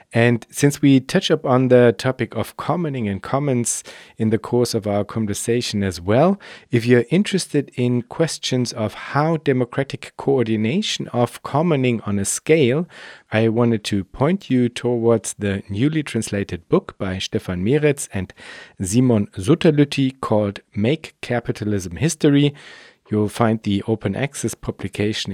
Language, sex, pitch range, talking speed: German, male, 100-135 Hz, 140 wpm